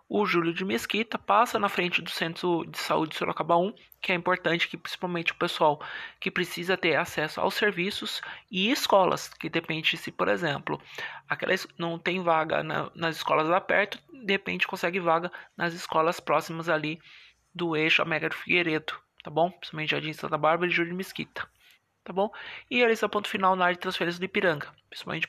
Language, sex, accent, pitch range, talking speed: Portuguese, male, Brazilian, 165-195 Hz, 190 wpm